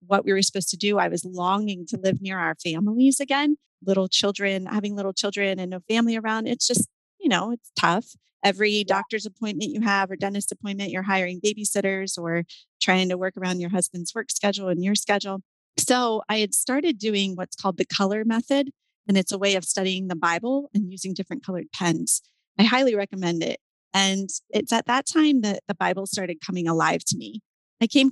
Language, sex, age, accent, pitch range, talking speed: English, female, 30-49, American, 185-220 Hz, 205 wpm